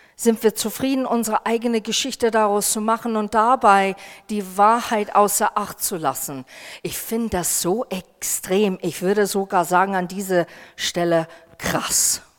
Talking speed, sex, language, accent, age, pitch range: 145 wpm, female, German, German, 40-59, 210-285 Hz